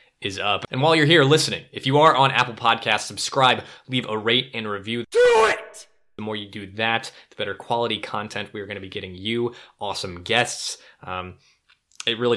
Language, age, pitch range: English, 20-39, 105-120 Hz